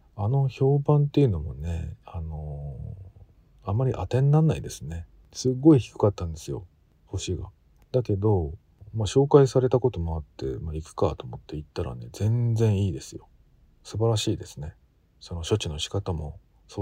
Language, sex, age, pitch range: Japanese, male, 40-59, 80-110 Hz